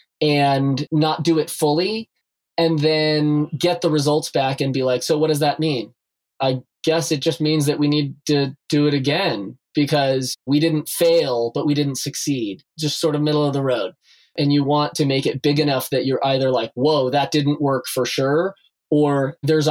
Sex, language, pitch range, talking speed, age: male, English, 135-165 Hz, 200 wpm, 20-39